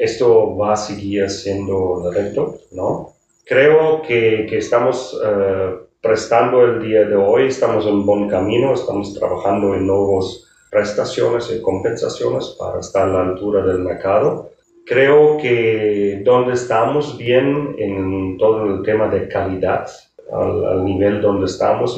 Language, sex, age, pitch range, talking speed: Spanish, male, 40-59, 100-125 Hz, 140 wpm